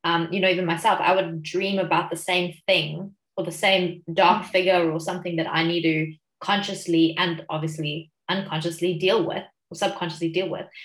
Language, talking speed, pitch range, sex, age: English, 185 wpm, 170-200 Hz, female, 20-39